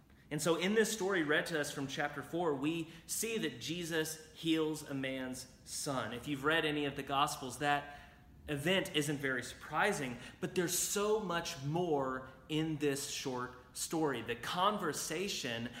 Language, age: English, 30-49